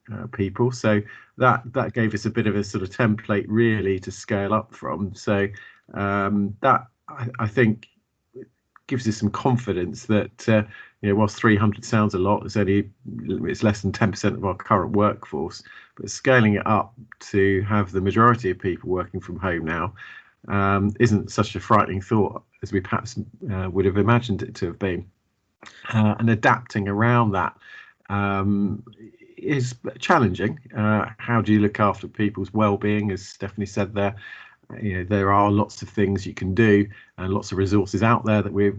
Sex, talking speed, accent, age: male, 185 wpm, British, 40-59